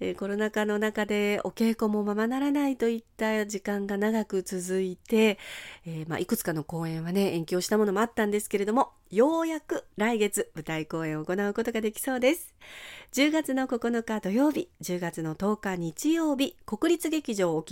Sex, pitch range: female, 175-260 Hz